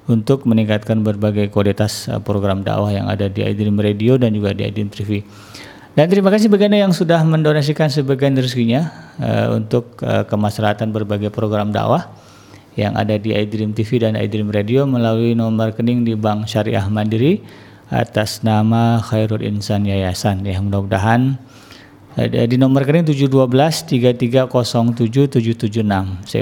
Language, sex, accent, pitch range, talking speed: Indonesian, male, native, 105-135 Hz, 135 wpm